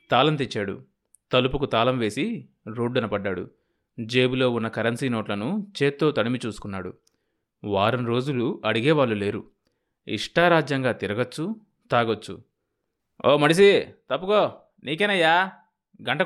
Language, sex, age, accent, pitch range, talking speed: Telugu, male, 20-39, native, 110-165 Hz, 95 wpm